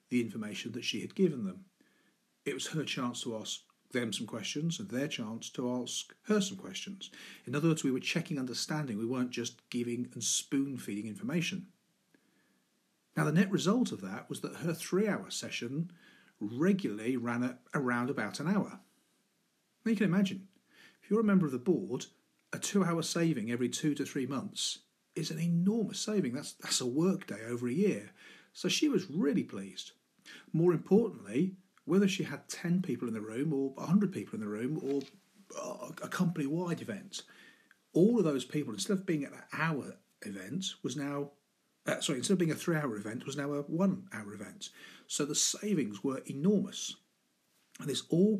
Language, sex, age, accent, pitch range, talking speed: English, male, 40-59, British, 135-195 Hz, 180 wpm